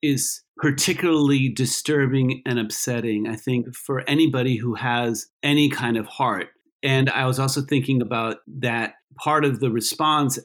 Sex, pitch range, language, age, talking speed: male, 115-140 Hz, English, 40-59, 150 wpm